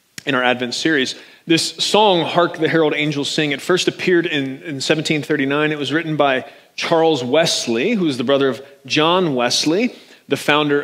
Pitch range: 135-170 Hz